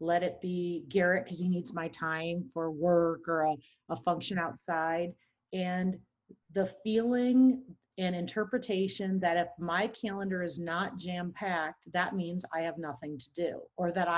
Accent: American